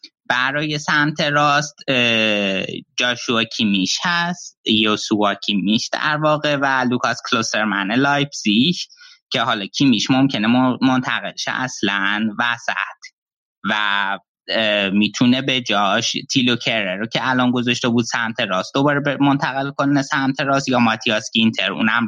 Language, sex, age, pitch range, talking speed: Persian, male, 20-39, 110-145 Hz, 115 wpm